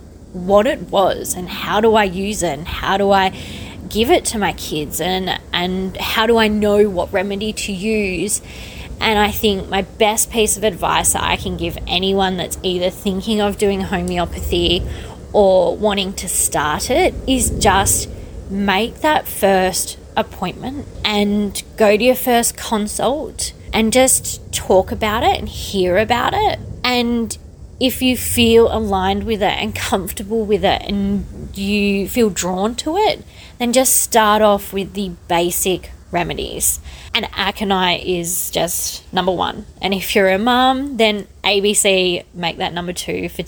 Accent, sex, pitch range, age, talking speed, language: Australian, female, 185-220 Hz, 20-39, 160 wpm, English